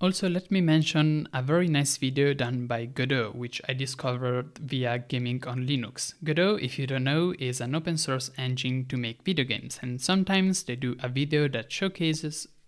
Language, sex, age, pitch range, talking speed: English, male, 20-39, 130-155 Hz, 190 wpm